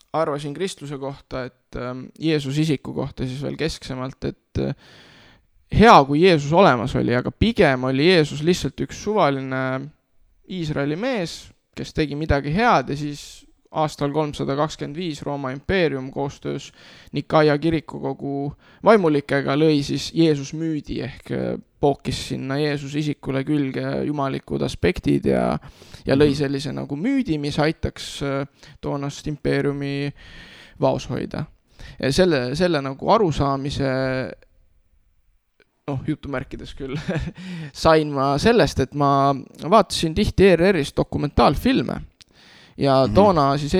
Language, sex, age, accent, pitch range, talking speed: English, male, 20-39, Finnish, 135-160 Hz, 115 wpm